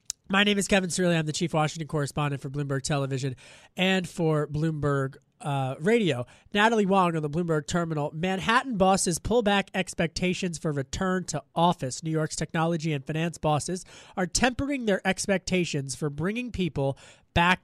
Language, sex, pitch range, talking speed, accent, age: English, male, 150-190 Hz, 160 wpm, American, 30-49